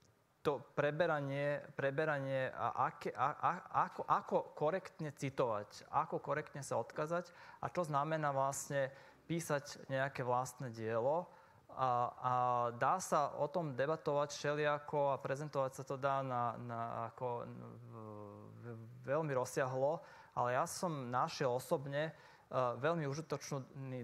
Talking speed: 120 wpm